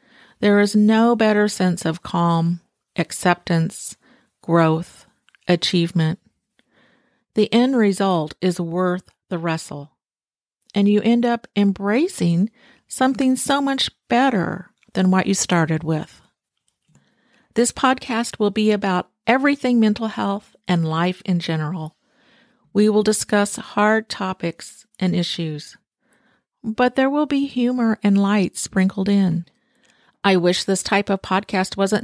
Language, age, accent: English, 50-69, American